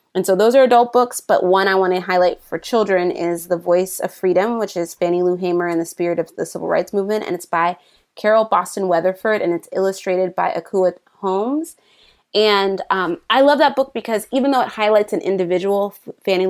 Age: 20-39